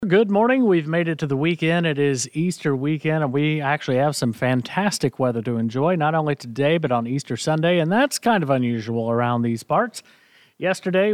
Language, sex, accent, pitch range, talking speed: English, male, American, 130-185 Hz, 200 wpm